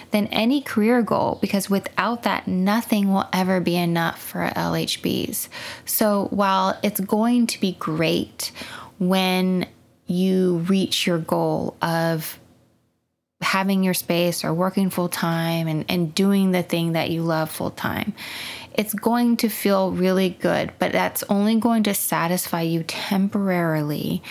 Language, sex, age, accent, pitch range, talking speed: English, female, 20-39, American, 170-205 Hz, 140 wpm